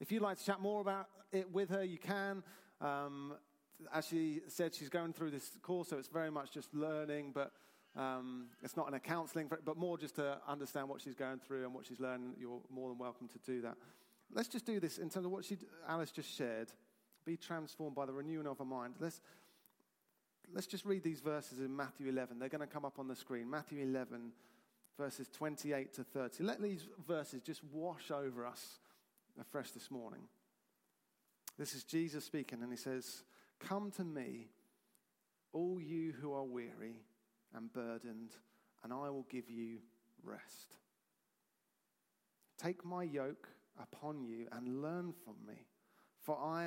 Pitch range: 130-165 Hz